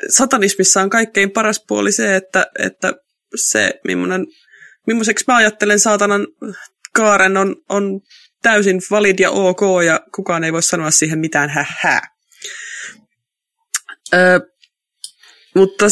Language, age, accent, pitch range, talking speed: Finnish, 20-39, native, 150-210 Hz, 110 wpm